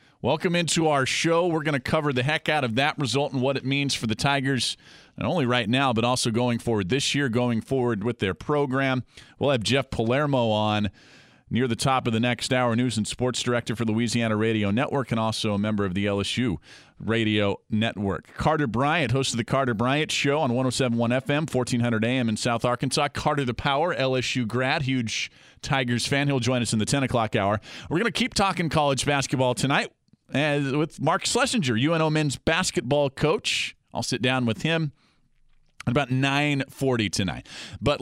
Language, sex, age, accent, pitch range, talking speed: English, male, 40-59, American, 120-160 Hz, 195 wpm